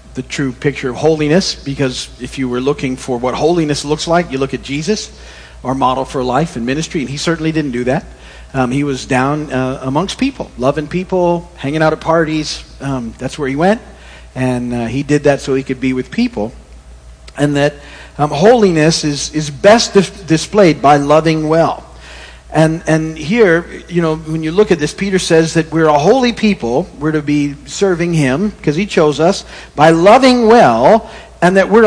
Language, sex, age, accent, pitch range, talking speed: English, male, 50-69, American, 130-180 Hz, 195 wpm